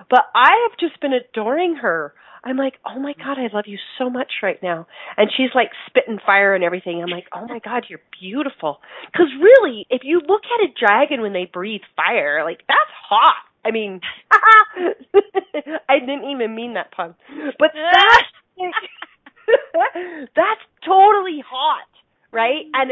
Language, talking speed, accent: English, 160 wpm, American